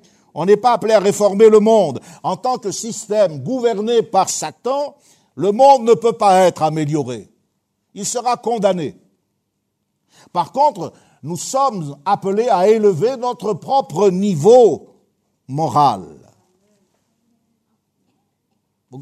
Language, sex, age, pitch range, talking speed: French, male, 60-79, 170-220 Hz, 115 wpm